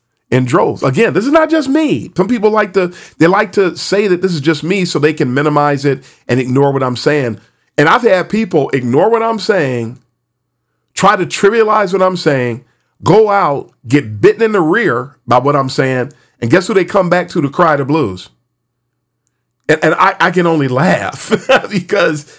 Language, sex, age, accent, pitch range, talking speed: English, male, 40-59, American, 130-180 Hz, 200 wpm